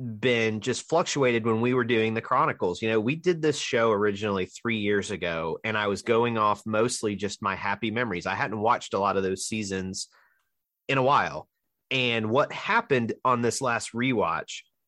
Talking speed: 190 wpm